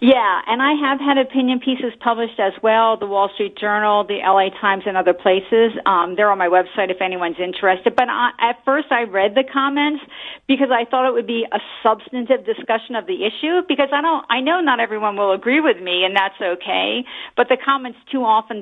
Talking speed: 215 wpm